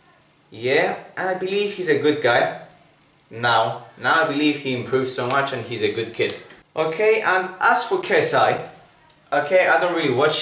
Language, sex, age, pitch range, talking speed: English, male, 20-39, 130-175 Hz, 180 wpm